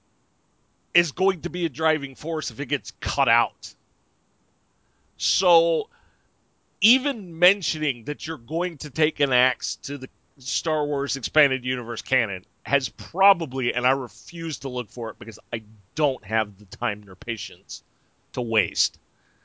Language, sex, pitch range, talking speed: English, male, 125-170 Hz, 150 wpm